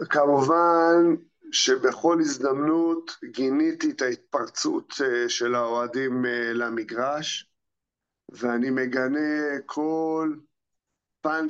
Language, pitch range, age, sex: Hebrew, 140-190 Hz, 50-69, male